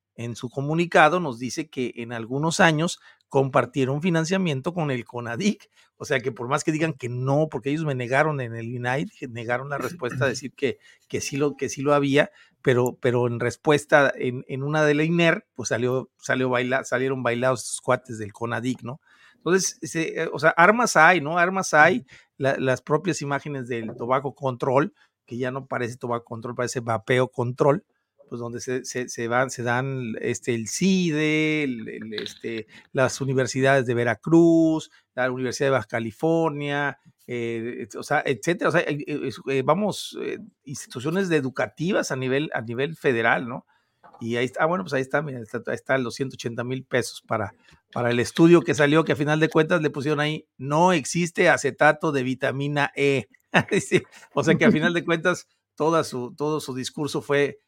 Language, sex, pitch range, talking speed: Spanish, male, 125-155 Hz, 190 wpm